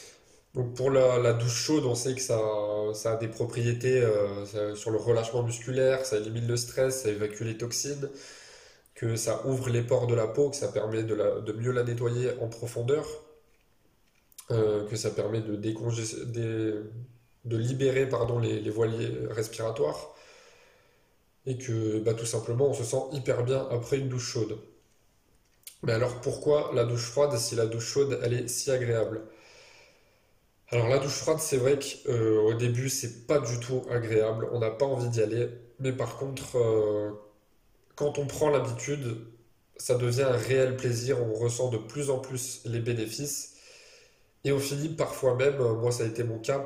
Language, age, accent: French, 20-39, French